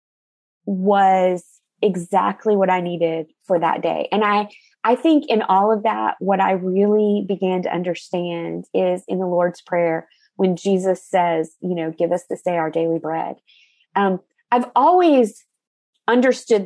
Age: 30-49